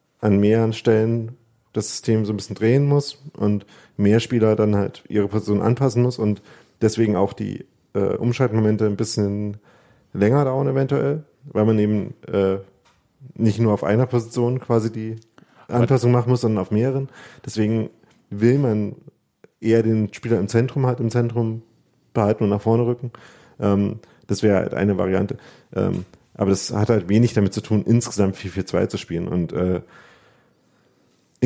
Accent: German